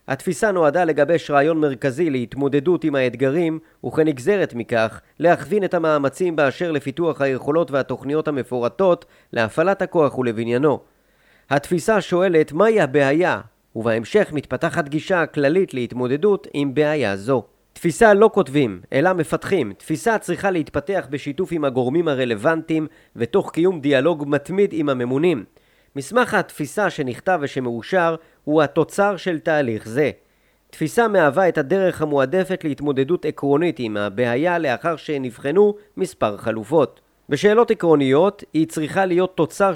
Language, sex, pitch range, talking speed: Hebrew, male, 135-180 Hz, 120 wpm